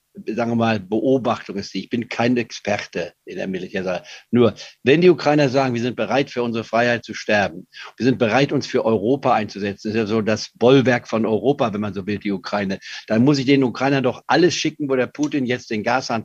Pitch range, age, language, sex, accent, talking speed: 110-135 Hz, 50-69, German, male, German, 225 wpm